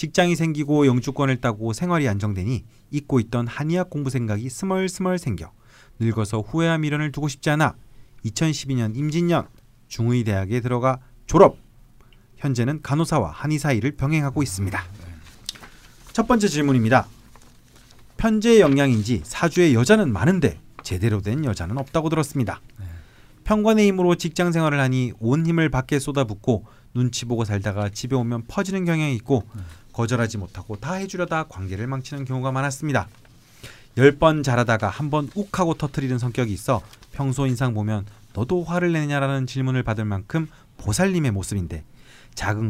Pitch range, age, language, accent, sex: 110-150 Hz, 30-49, Korean, native, male